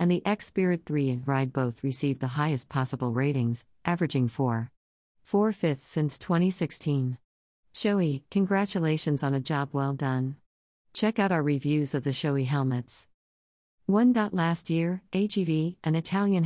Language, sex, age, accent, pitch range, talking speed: English, female, 50-69, American, 130-165 Hz, 140 wpm